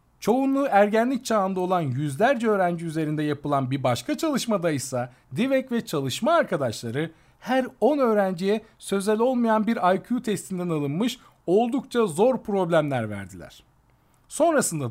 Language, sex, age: Turkish, male, 50-69